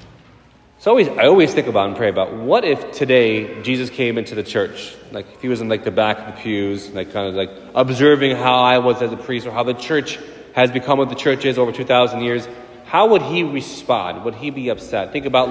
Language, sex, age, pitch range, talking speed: English, male, 30-49, 115-145 Hz, 235 wpm